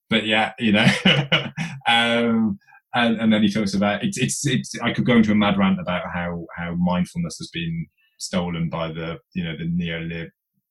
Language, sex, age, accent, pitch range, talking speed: English, male, 20-39, British, 130-195 Hz, 190 wpm